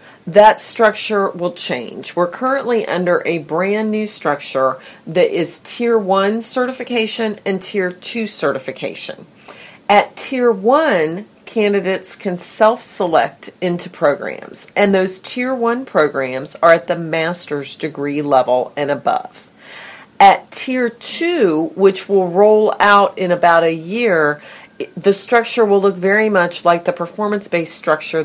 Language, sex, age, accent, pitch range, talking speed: English, female, 40-59, American, 160-220 Hz, 130 wpm